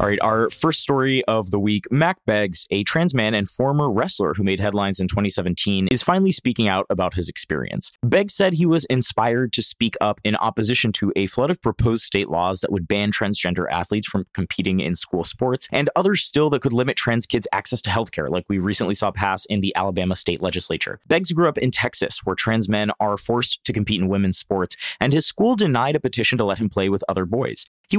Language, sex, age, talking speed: English, male, 20-39, 225 wpm